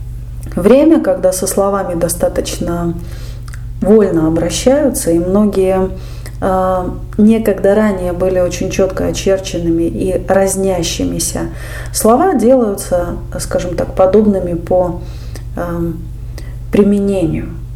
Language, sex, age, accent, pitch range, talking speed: Russian, female, 30-49, native, 175-240 Hz, 80 wpm